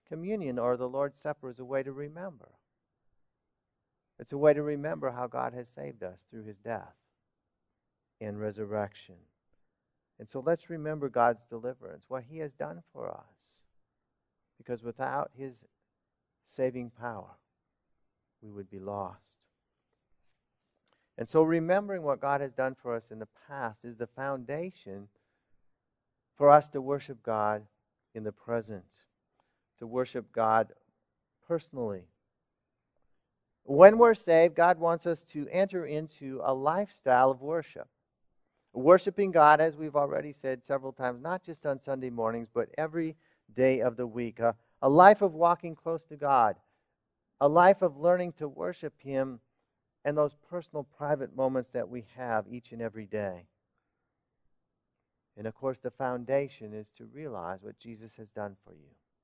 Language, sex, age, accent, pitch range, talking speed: English, male, 50-69, American, 115-155 Hz, 150 wpm